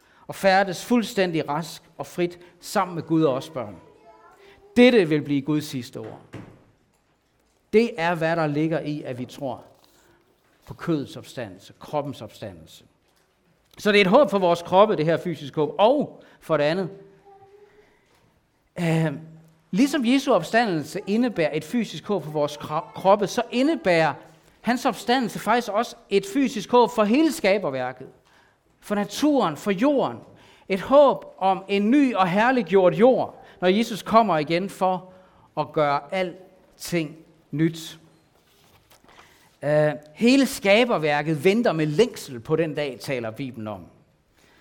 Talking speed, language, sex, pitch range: 140 wpm, Danish, male, 150-215 Hz